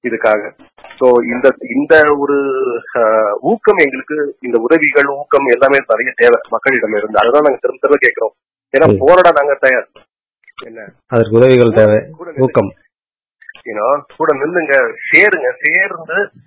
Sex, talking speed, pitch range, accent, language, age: male, 105 wpm, 125-195 Hz, native, Tamil, 30-49